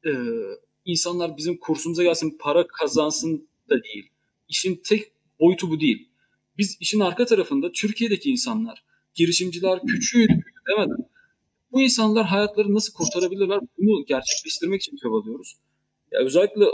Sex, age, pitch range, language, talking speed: male, 40-59, 160-235 Hz, Turkish, 125 wpm